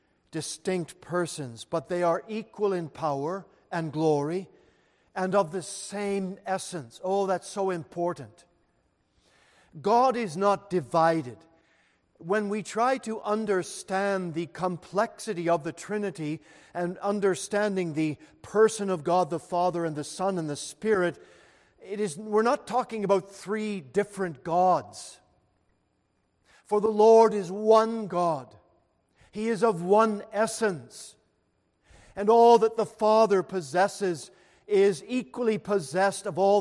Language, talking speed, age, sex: English, 130 wpm, 50-69, male